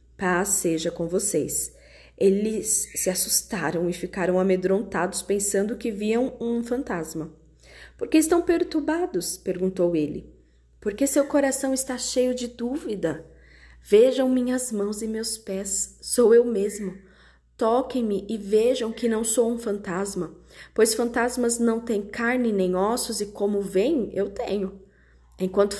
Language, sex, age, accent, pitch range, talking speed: Portuguese, female, 20-39, Brazilian, 175-230 Hz, 135 wpm